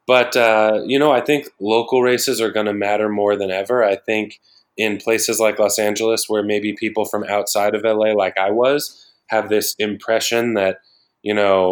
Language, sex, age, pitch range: English, male, 20-39, 105-120 Hz